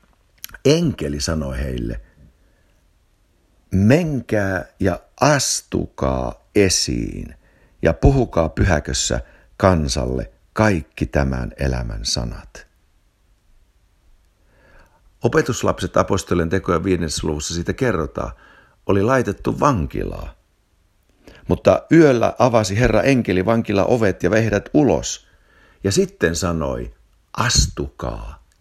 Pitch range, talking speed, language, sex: 80-115 Hz, 80 wpm, Finnish, male